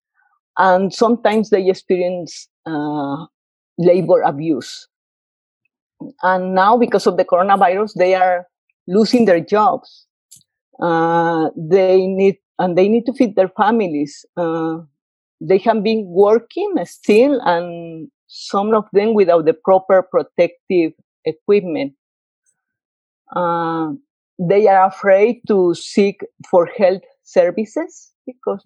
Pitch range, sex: 170-210 Hz, female